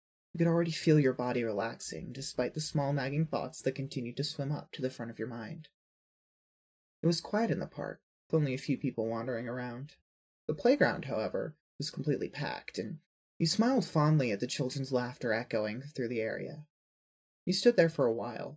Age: 20-39